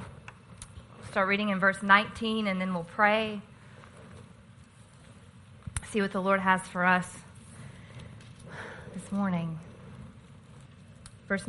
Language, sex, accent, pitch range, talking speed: English, female, American, 180-220 Hz, 100 wpm